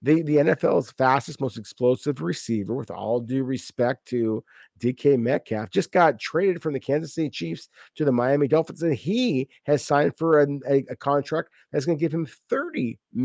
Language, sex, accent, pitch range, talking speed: English, male, American, 120-155 Hz, 180 wpm